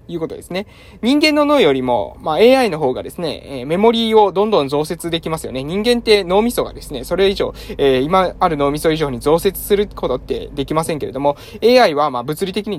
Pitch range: 150-235 Hz